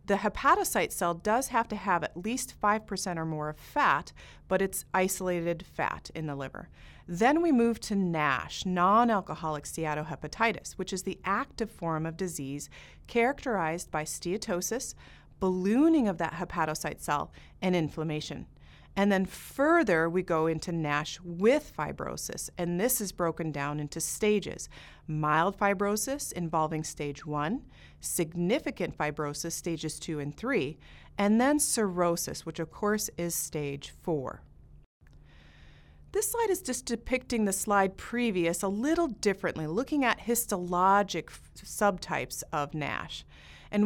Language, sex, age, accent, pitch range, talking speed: English, female, 30-49, American, 160-215 Hz, 135 wpm